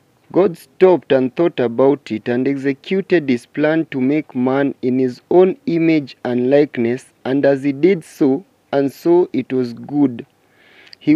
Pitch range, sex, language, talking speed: 125-170 Hz, male, English, 160 wpm